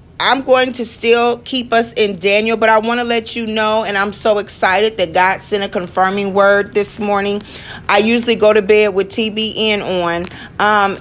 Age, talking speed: 40-59, 195 wpm